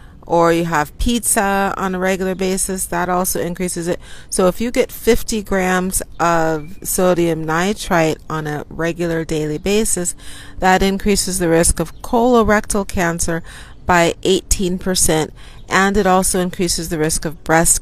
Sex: female